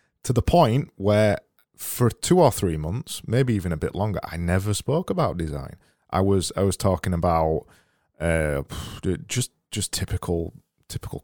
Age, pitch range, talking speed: 20-39, 85-115 Hz, 160 wpm